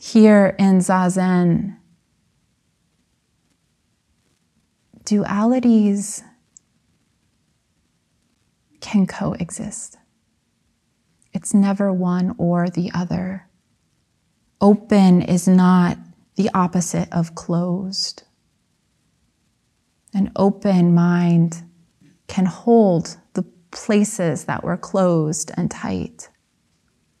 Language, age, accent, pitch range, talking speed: English, 20-39, American, 175-205 Hz, 70 wpm